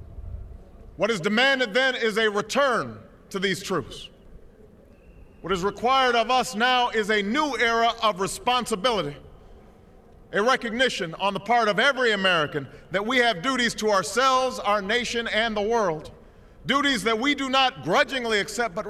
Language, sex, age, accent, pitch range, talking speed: English, male, 40-59, American, 200-255 Hz, 155 wpm